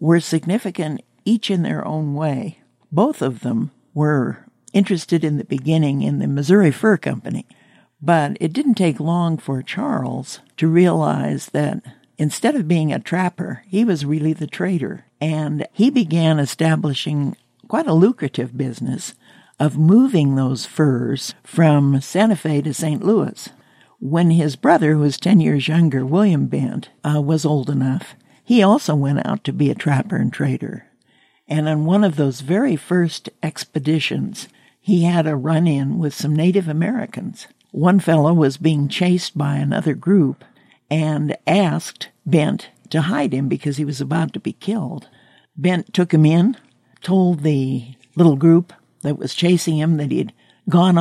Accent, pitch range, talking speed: American, 145-180 Hz, 160 wpm